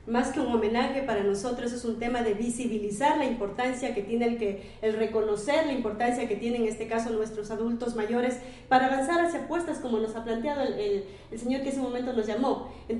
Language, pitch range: Spanish, 225-270 Hz